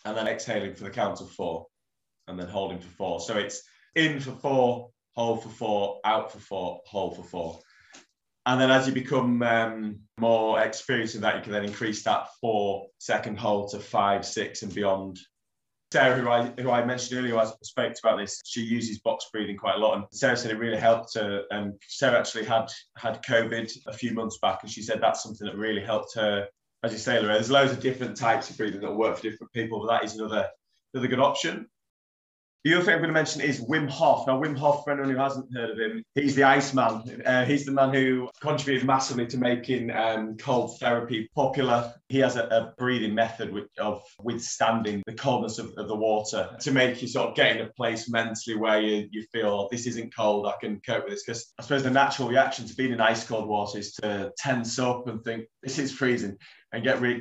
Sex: male